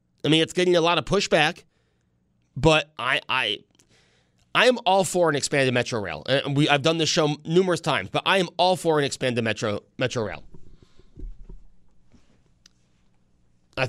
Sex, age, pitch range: male, 30-49, 125-180 Hz